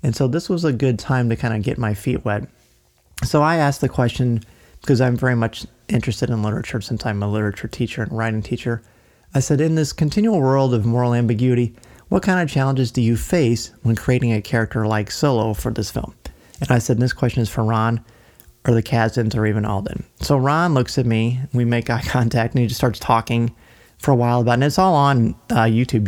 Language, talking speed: English, 225 wpm